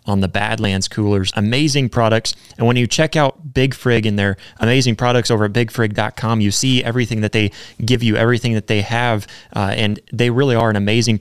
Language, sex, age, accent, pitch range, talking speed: English, male, 20-39, American, 105-125 Hz, 205 wpm